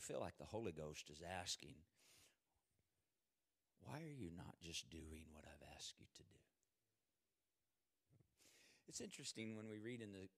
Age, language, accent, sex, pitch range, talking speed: 50-69, English, American, male, 100-135 Hz, 150 wpm